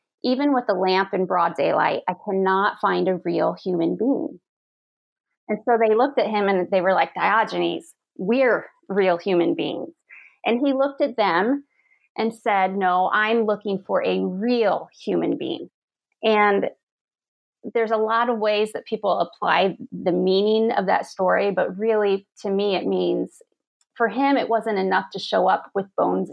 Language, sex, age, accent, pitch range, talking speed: English, female, 30-49, American, 190-230 Hz, 170 wpm